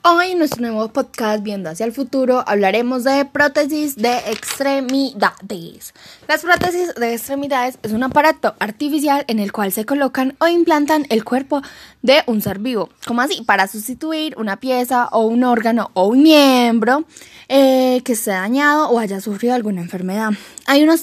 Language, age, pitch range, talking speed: Spanish, 10-29, 205-275 Hz, 170 wpm